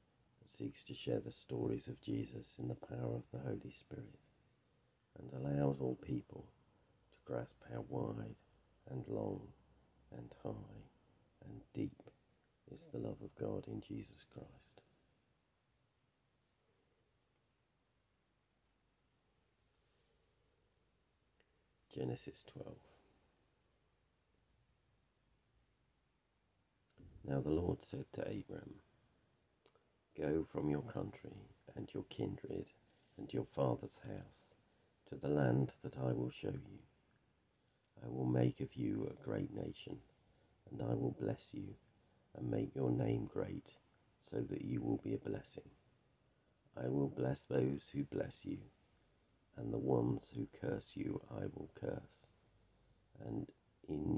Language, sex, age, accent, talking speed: English, male, 50-69, British, 115 wpm